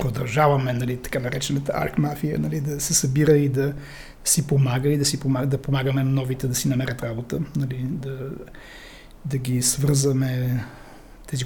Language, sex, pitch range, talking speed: Bulgarian, male, 135-160 Hz, 155 wpm